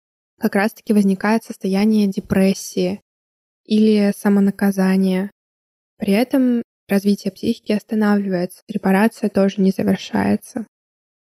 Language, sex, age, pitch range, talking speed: Russian, female, 20-39, 190-215 Hz, 85 wpm